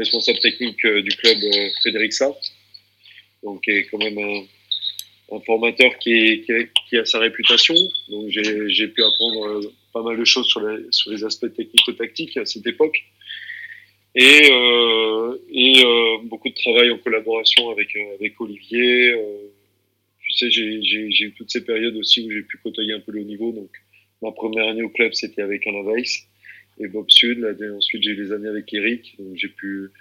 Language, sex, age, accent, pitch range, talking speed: French, male, 30-49, French, 100-115 Hz, 185 wpm